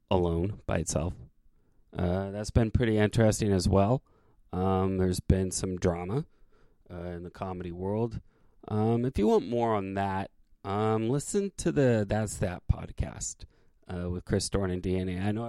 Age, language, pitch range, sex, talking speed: 30-49, English, 90-105 Hz, male, 165 wpm